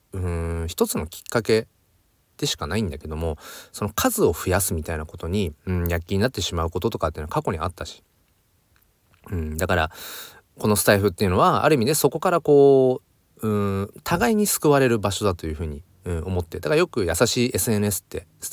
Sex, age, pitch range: male, 30-49, 85-120 Hz